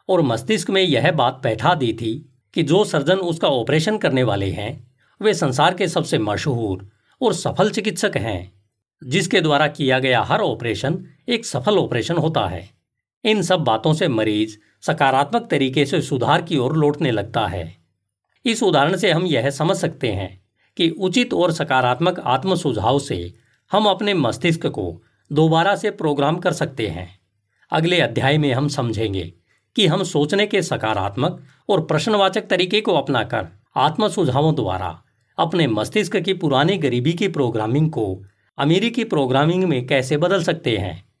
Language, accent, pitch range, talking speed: Hindi, native, 110-180 Hz, 155 wpm